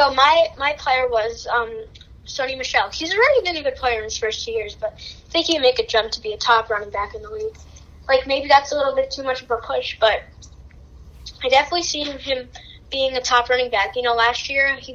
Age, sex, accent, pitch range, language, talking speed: 10-29, female, American, 230-275 Hz, English, 245 wpm